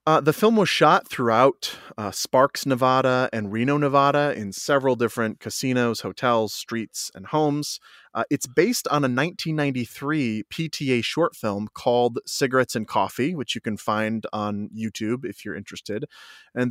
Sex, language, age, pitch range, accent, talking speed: male, English, 30-49, 110-140 Hz, American, 155 wpm